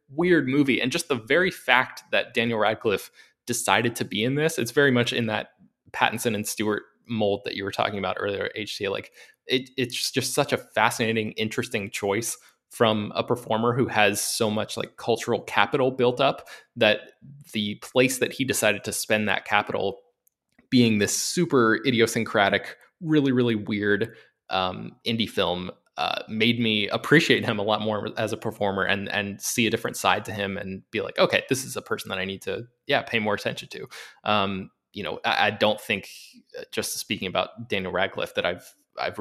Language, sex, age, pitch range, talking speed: English, male, 20-39, 105-135 Hz, 185 wpm